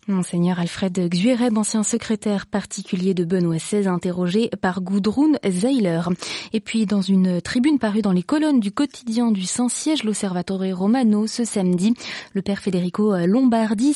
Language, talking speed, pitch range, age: French, 145 wpm, 190-235 Hz, 20-39